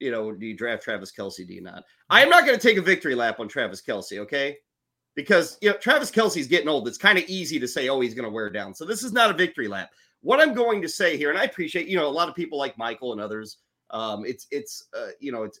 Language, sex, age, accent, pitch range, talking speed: English, male, 30-49, American, 130-205 Hz, 290 wpm